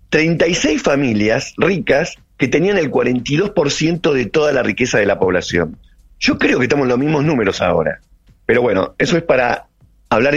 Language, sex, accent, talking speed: Spanish, male, Argentinian, 170 wpm